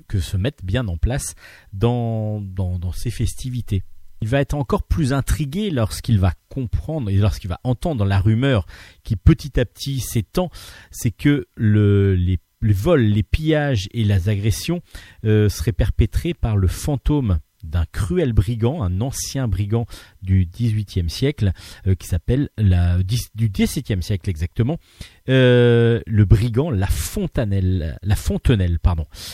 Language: French